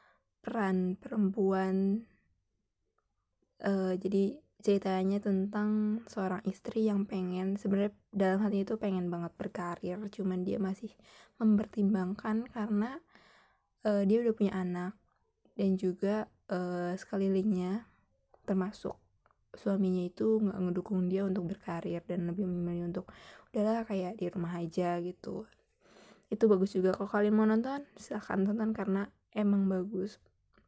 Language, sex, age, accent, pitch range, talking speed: Indonesian, female, 20-39, native, 185-215 Hz, 120 wpm